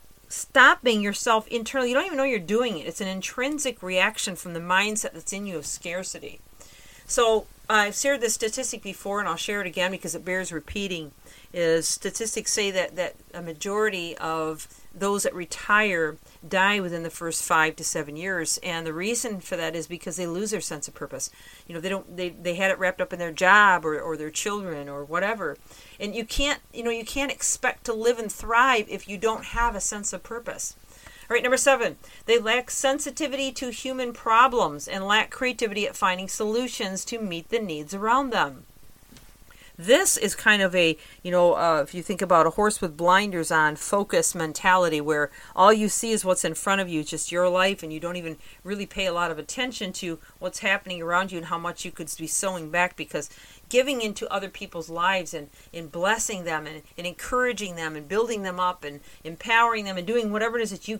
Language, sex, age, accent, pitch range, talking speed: English, female, 40-59, American, 170-220 Hz, 210 wpm